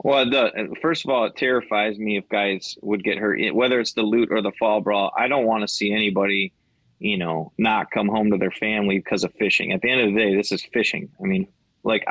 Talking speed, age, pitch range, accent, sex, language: 245 wpm, 20-39, 105-130 Hz, American, male, English